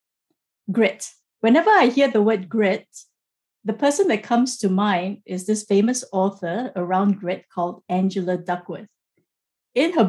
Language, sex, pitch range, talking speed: English, female, 195-255 Hz, 145 wpm